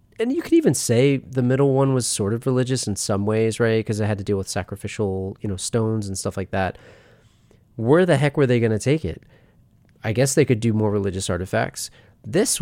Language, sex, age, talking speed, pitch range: English, male, 30-49, 230 wpm, 105-135 Hz